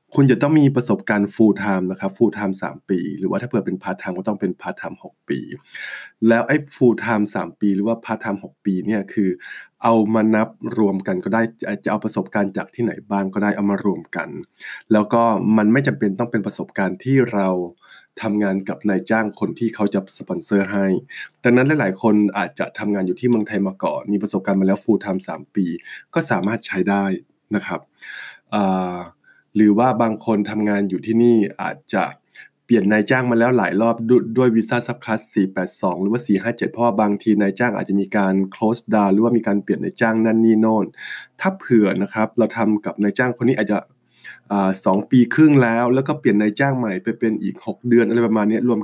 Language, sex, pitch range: Thai, male, 100-115 Hz